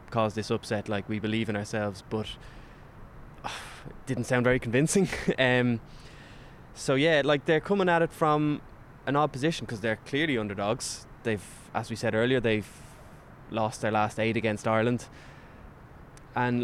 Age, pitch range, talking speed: 20-39, 110-130 Hz, 155 wpm